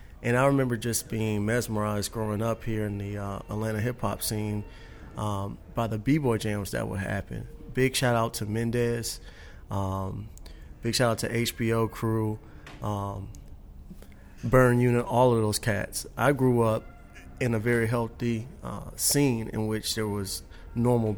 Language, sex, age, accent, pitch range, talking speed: English, male, 30-49, American, 95-115 Hz, 160 wpm